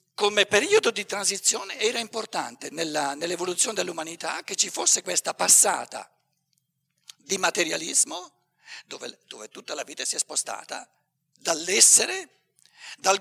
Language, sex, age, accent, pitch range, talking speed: Italian, male, 50-69, native, 160-255 Hz, 115 wpm